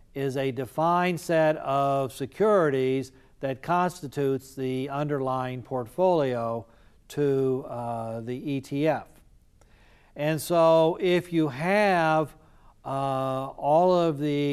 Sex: male